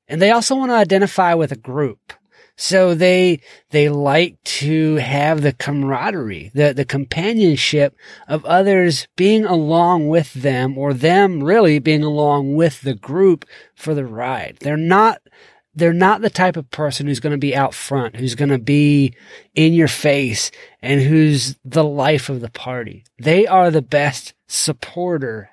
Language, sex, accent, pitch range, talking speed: English, male, American, 135-180 Hz, 165 wpm